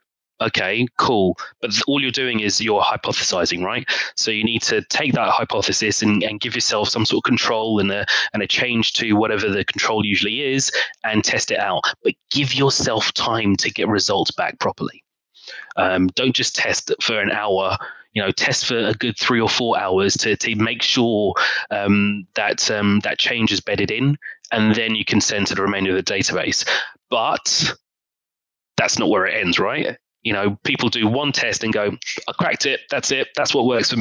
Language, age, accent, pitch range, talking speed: English, 20-39, British, 105-125 Hz, 200 wpm